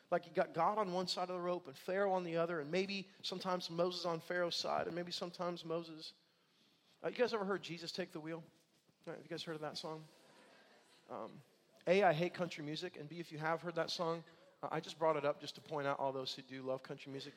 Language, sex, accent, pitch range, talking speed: English, male, American, 145-175 Hz, 255 wpm